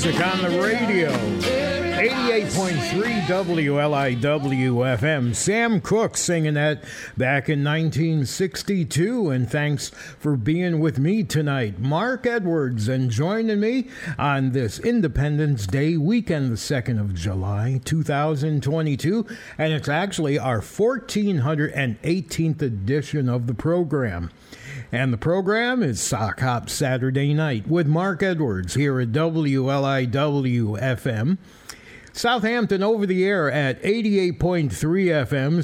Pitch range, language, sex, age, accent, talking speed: 130-180 Hz, English, male, 50-69, American, 110 wpm